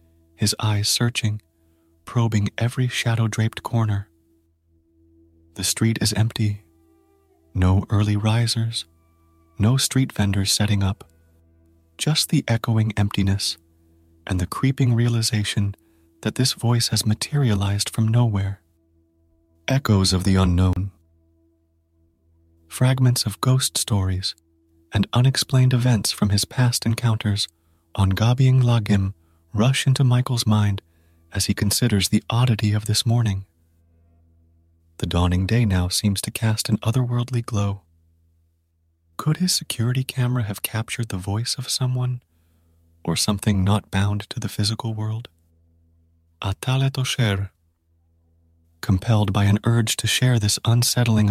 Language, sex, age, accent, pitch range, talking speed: English, male, 30-49, American, 85-115 Hz, 120 wpm